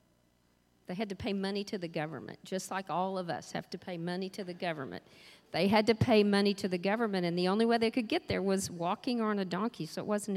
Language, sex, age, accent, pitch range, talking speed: English, female, 50-69, American, 175-235 Hz, 255 wpm